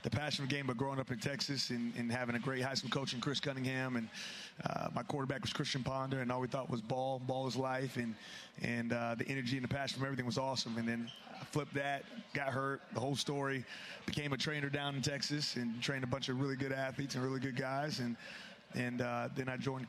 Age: 30-49